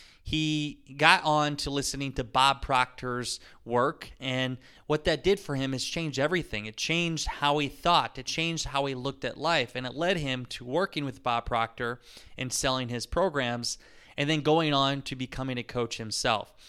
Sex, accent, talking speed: male, American, 185 wpm